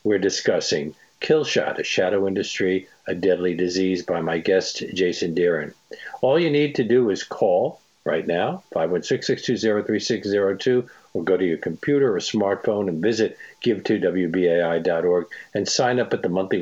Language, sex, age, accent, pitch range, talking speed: English, male, 50-69, American, 95-155 Hz, 150 wpm